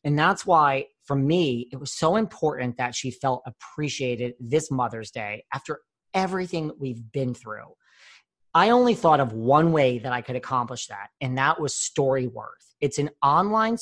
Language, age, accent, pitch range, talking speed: English, 40-59, American, 130-170 Hz, 170 wpm